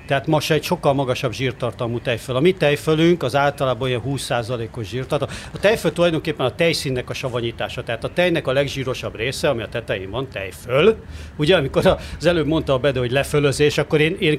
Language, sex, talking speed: Hungarian, male, 190 wpm